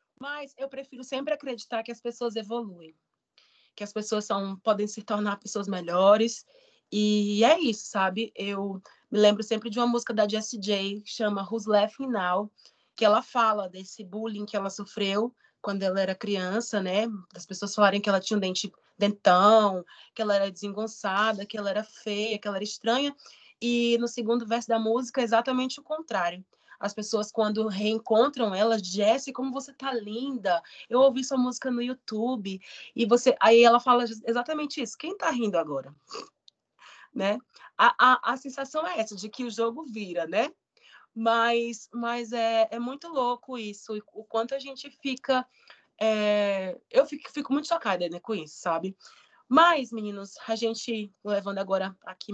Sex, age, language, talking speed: female, 20-39, Portuguese, 170 wpm